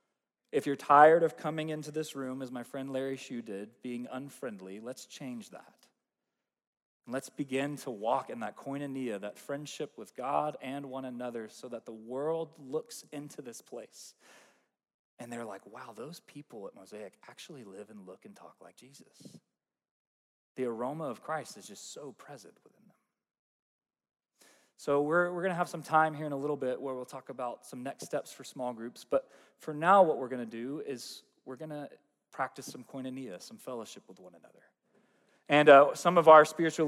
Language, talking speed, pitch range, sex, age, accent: English, 190 wpm, 135-160 Hz, male, 20-39, American